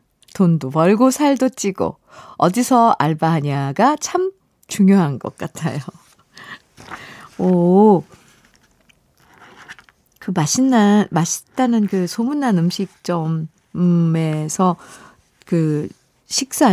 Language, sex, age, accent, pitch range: Korean, female, 50-69, native, 165-240 Hz